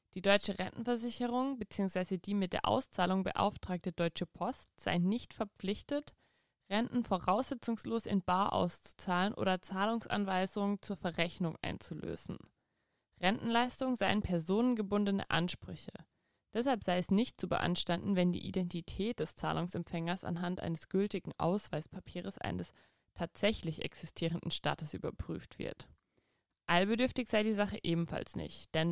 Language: German